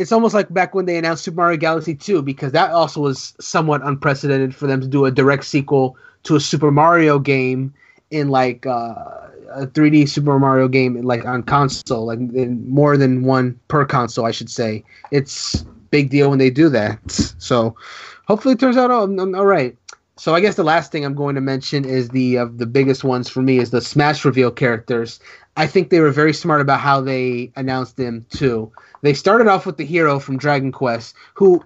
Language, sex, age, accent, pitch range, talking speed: English, male, 30-49, American, 130-155 Hz, 210 wpm